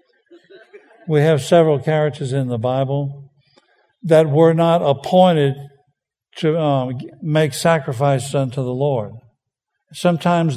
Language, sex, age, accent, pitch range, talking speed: English, male, 60-79, American, 140-170 Hz, 110 wpm